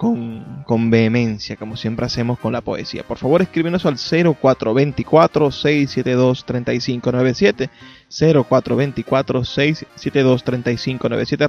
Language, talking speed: Spanish, 100 wpm